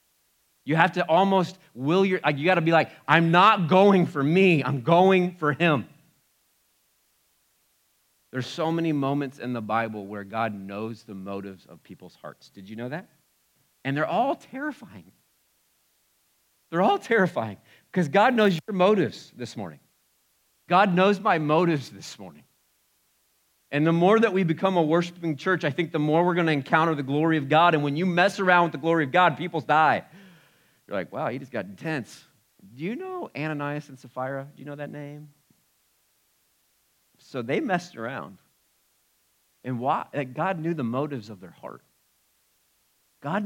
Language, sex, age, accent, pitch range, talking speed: English, male, 40-59, American, 115-175 Hz, 170 wpm